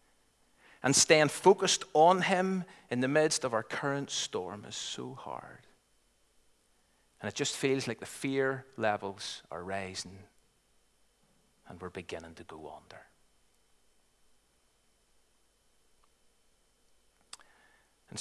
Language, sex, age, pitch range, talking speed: English, male, 40-59, 115-165 Hz, 105 wpm